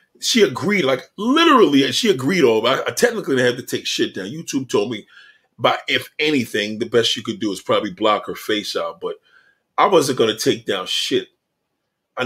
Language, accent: English, American